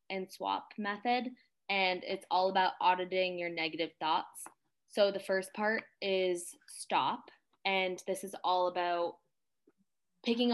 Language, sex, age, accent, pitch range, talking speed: English, female, 20-39, American, 175-200 Hz, 130 wpm